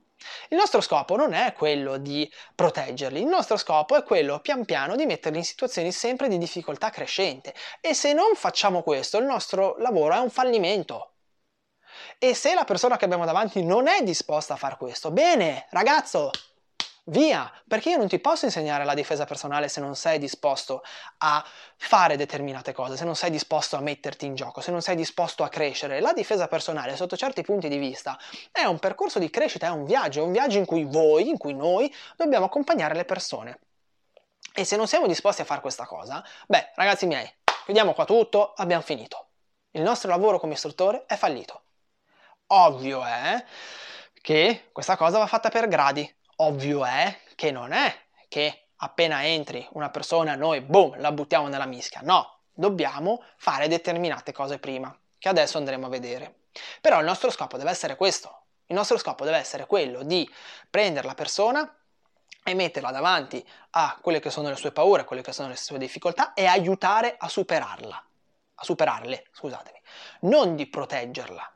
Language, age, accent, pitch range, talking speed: Italian, 20-39, native, 145-215 Hz, 180 wpm